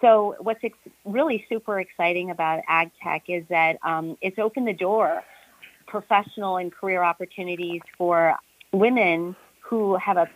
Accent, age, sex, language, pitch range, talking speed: American, 40-59, female, English, 165-210 Hz, 140 wpm